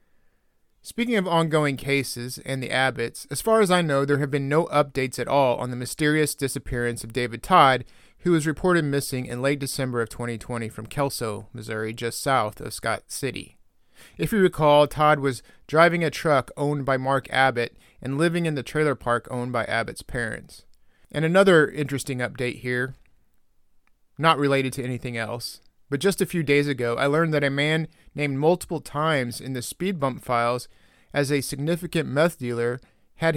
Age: 30-49